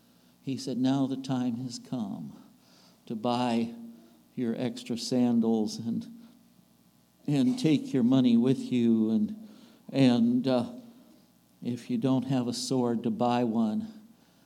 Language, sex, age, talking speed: English, male, 60-79, 130 wpm